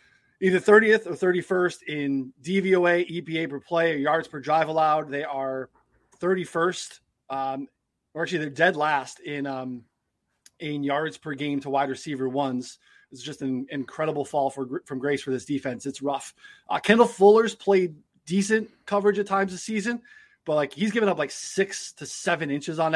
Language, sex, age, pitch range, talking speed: English, male, 20-39, 140-175 Hz, 175 wpm